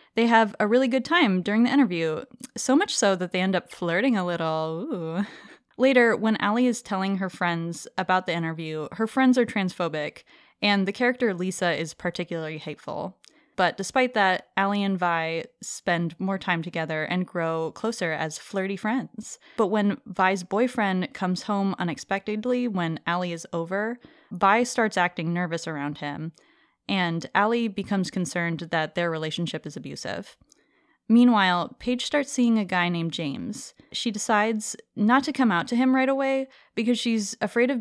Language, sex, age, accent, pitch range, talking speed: English, female, 20-39, American, 175-235 Hz, 165 wpm